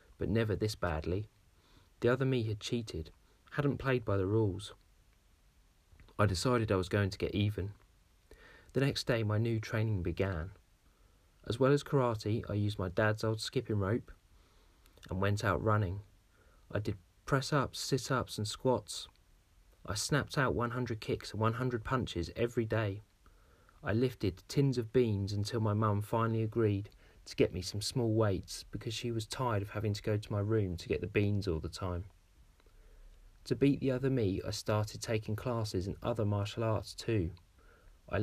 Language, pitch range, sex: English, 90-115 Hz, male